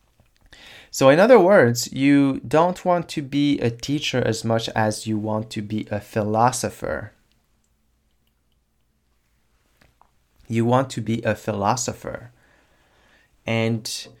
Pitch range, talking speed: 105-125 Hz, 115 wpm